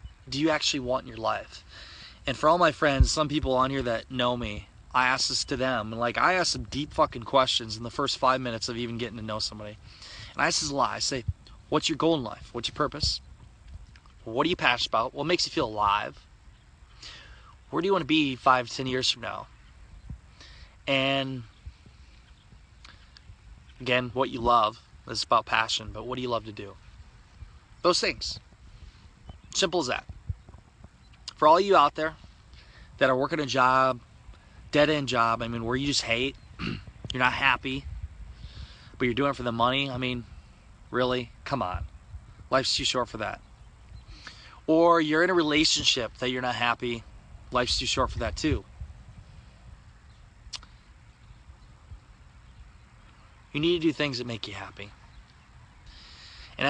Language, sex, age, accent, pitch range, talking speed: English, male, 20-39, American, 105-135 Hz, 175 wpm